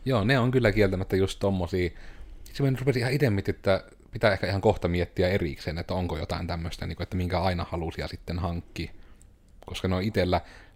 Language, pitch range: Finnish, 85-105 Hz